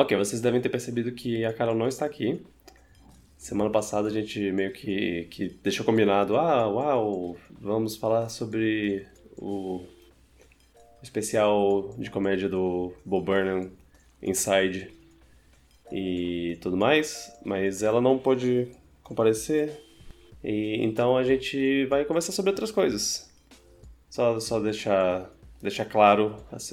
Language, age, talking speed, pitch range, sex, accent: Portuguese, 20-39, 125 wpm, 95-120 Hz, male, Brazilian